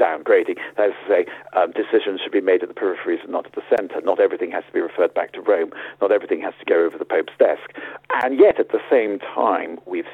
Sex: male